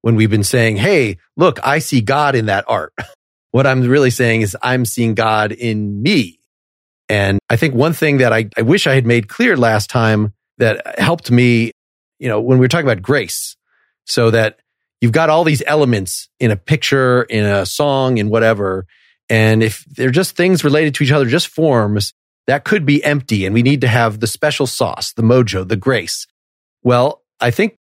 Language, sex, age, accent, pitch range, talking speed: English, male, 30-49, American, 110-135 Hz, 200 wpm